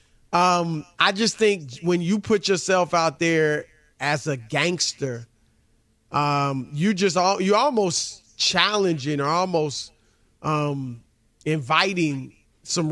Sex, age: male, 30-49